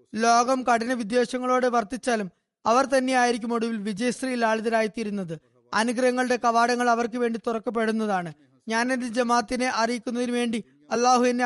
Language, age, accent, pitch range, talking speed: Malayalam, 20-39, native, 215-250 Hz, 105 wpm